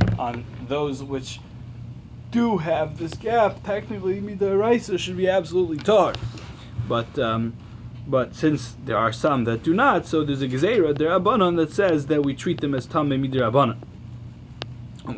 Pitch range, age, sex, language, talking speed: 120-155 Hz, 20-39, male, English, 155 wpm